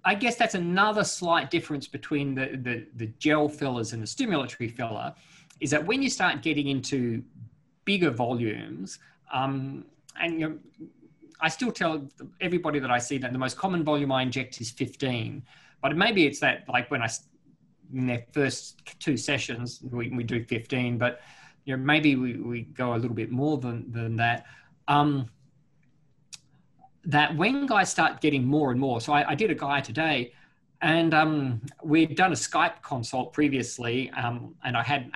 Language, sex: English, male